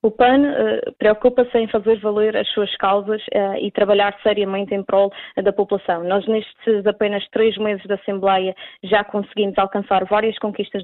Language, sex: Portuguese, female